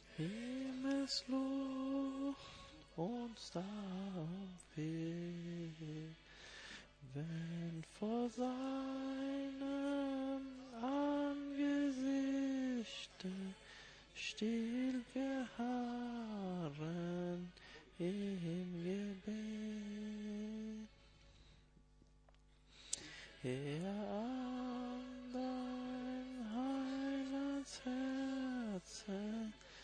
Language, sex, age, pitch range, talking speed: Portuguese, male, 20-39, 190-255 Hz, 40 wpm